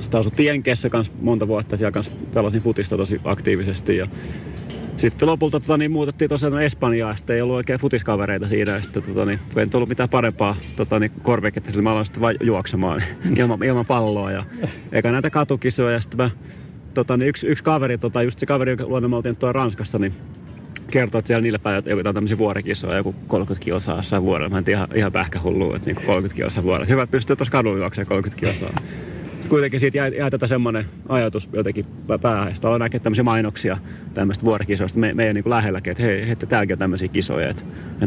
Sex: male